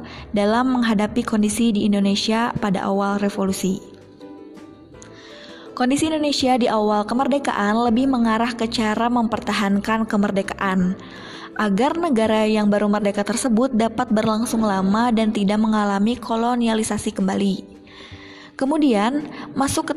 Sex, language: female, Indonesian